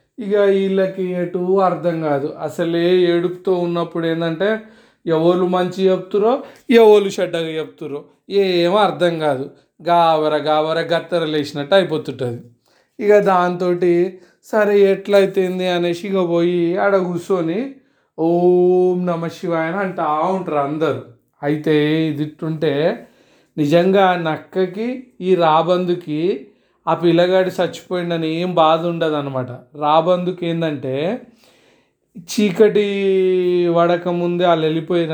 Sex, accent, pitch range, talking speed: male, native, 155-185 Hz, 90 wpm